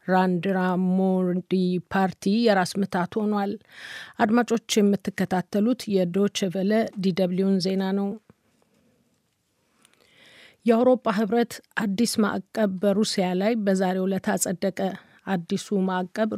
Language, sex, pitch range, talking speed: Amharic, female, 185-205 Hz, 85 wpm